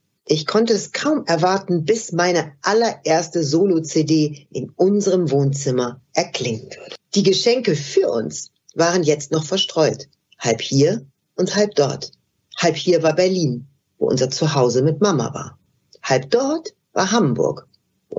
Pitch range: 140-190 Hz